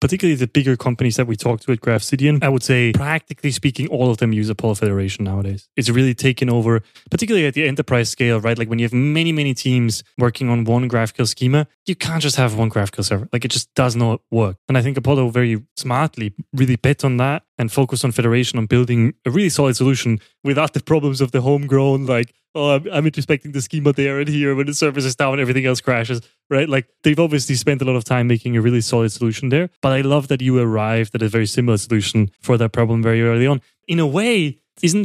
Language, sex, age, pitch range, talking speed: English, male, 20-39, 120-150 Hz, 235 wpm